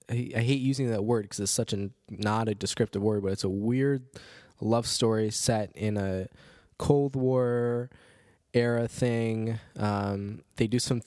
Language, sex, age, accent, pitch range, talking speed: English, male, 10-29, American, 100-120 Hz, 165 wpm